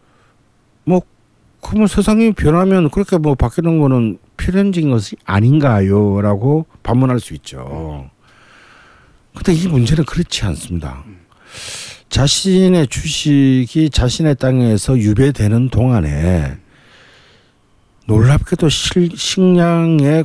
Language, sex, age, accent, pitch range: Korean, male, 50-69, native, 100-150 Hz